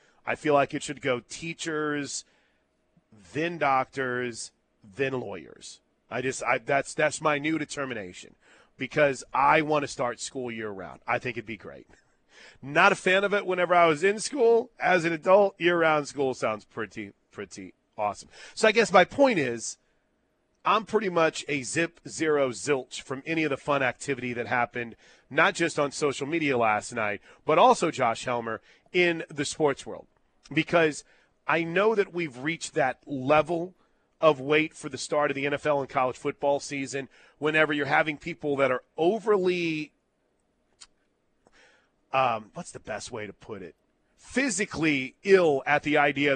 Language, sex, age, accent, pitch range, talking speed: English, male, 40-59, American, 130-165 Hz, 165 wpm